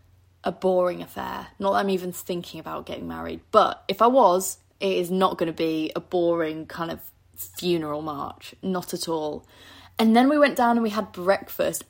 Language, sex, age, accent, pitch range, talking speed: English, female, 20-39, British, 165-210 Hz, 195 wpm